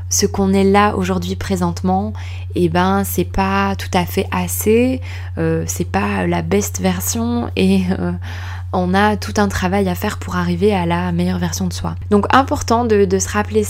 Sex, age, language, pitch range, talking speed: female, 20-39, French, 90-100 Hz, 195 wpm